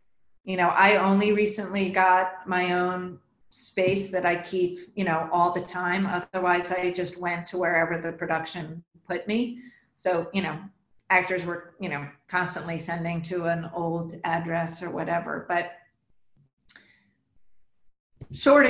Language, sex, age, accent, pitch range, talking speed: English, female, 40-59, American, 175-210 Hz, 140 wpm